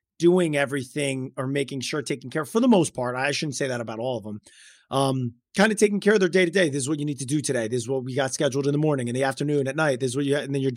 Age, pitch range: 30-49, 125-155 Hz